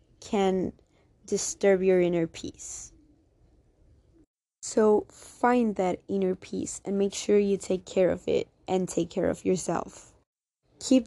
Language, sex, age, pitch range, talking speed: English, female, 20-39, 185-210 Hz, 130 wpm